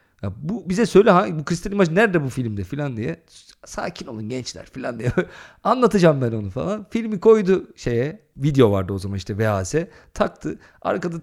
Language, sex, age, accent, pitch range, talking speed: Turkish, male, 40-59, native, 105-175 Hz, 170 wpm